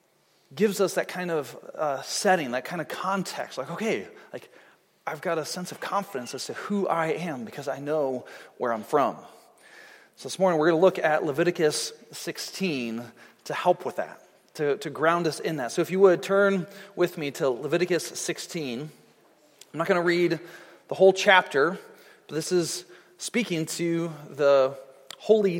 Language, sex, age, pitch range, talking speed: English, male, 30-49, 150-210 Hz, 180 wpm